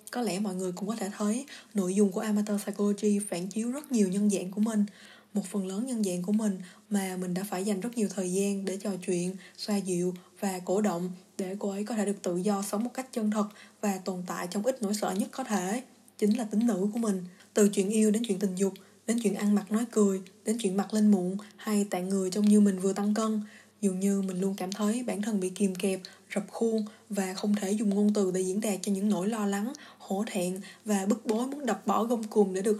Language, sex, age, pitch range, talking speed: Vietnamese, female, 20-39, 195-220 Hz, 255 wpm